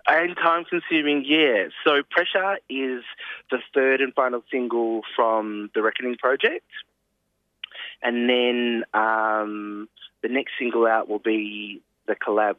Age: 20-39